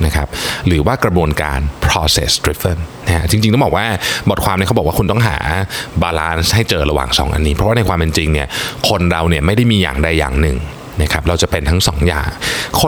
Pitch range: 80-115 Hz